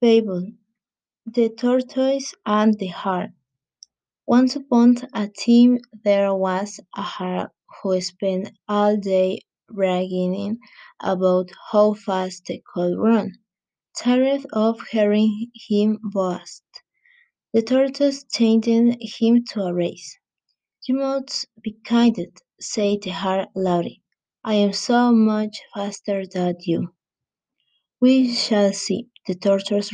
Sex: female